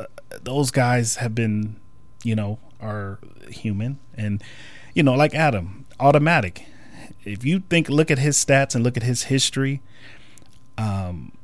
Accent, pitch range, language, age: American, 105-130 Hz, English, 30-49